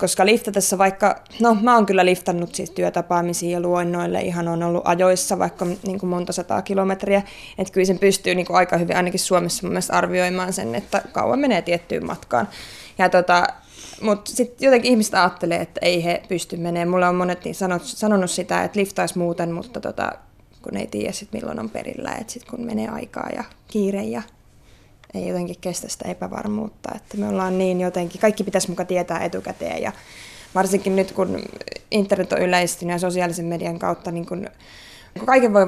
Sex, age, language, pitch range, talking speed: female, 20-39, Finnish, 175-200 Hz, 175 wpm